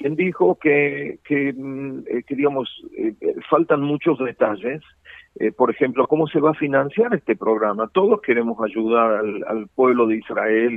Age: 50-69